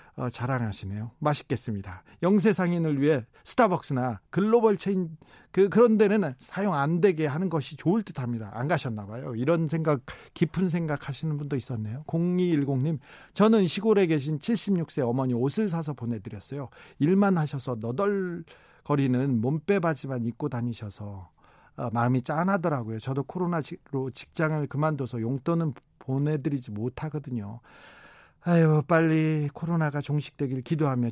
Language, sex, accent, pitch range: Korean, male, native, 130-165 Hz